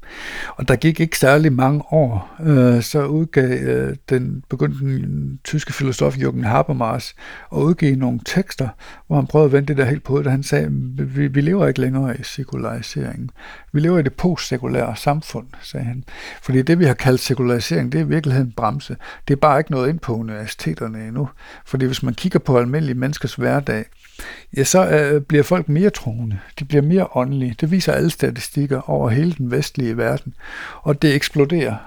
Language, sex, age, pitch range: Danish, male, 60-79, 120-150 Hz